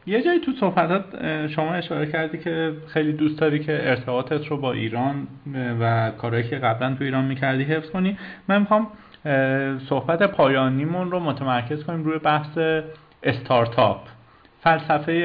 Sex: male